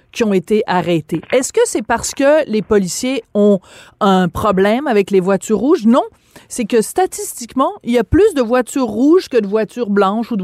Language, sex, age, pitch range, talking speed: French, female, 30-49, 190-245 Hz, 200 wpm